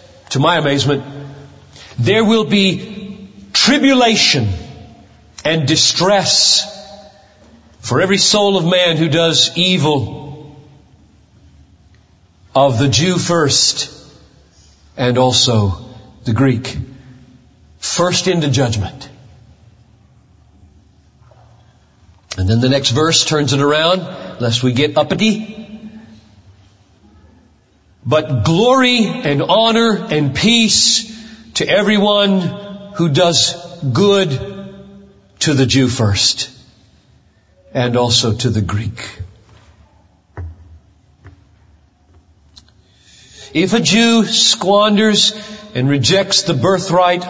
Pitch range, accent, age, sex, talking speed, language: 105-180 Hz, American, 40-59, male, 85 wpm, English